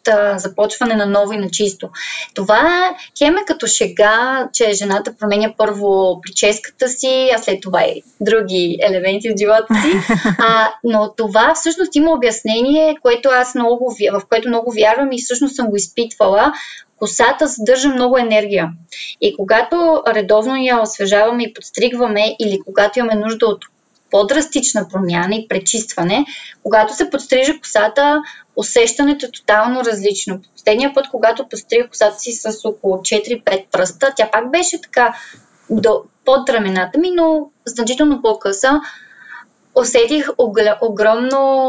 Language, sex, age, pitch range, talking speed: Bulgarian, female, 20-39, 210-260 Hz, 135 wpm